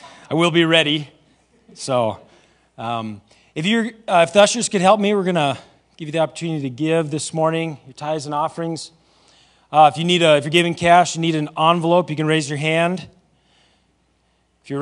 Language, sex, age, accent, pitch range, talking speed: English, male, 40-59, American, 135-160 Hz, 195 wpm